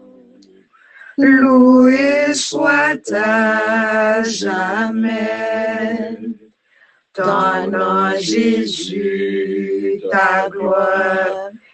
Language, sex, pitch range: English, female, 190-230 Hz